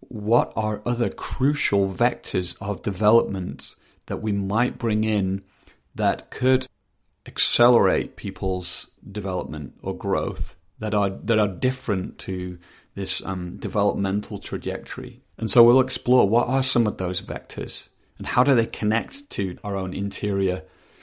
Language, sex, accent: English, male, British